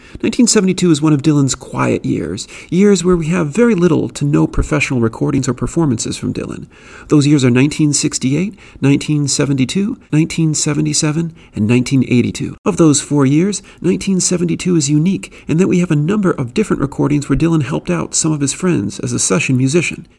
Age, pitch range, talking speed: 40-59, 125-160 Hz, 170 wpm